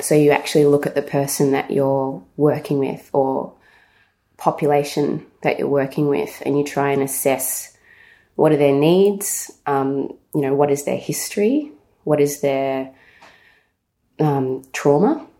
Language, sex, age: English, female, 20-39